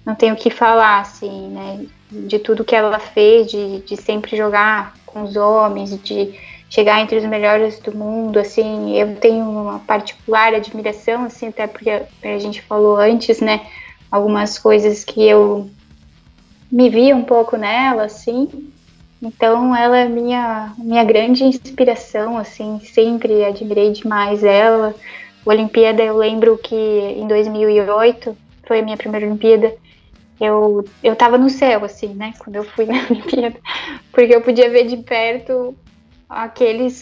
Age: 10-29